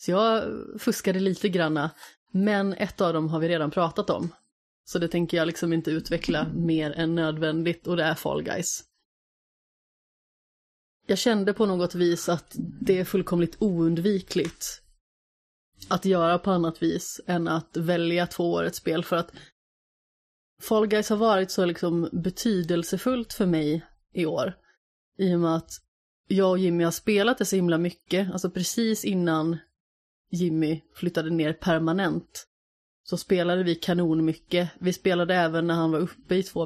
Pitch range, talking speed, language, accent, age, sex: 165-190 Hz, 160 wpm, Swedish, native, 30-49, female